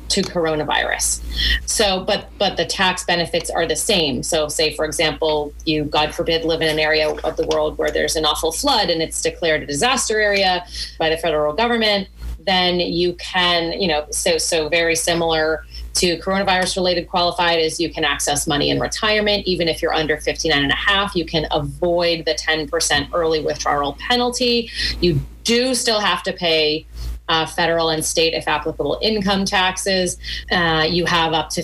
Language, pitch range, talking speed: English, 160-200 Hz, 180 wpm